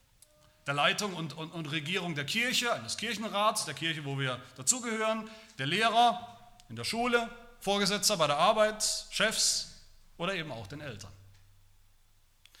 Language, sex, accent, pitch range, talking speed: German, male, German, 110-180 Hz, 145 wpm